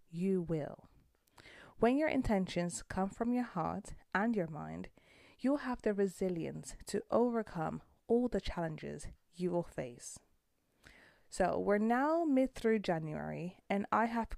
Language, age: English, 30-49